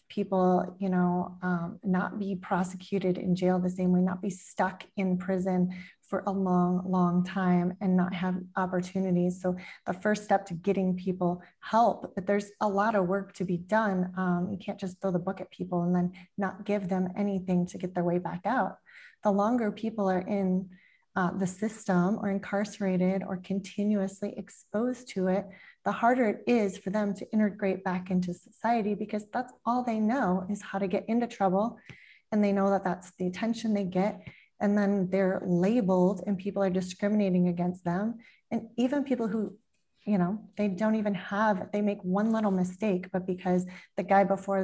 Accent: American